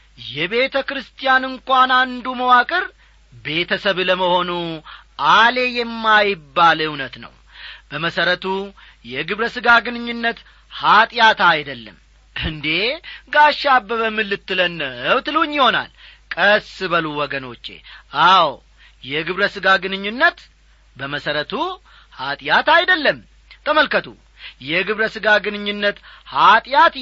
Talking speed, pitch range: 70 wpm, 190-265 Hz